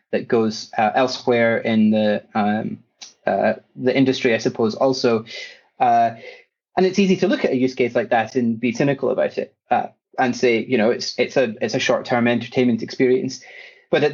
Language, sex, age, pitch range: English, male, 30-49, 115-130 Hz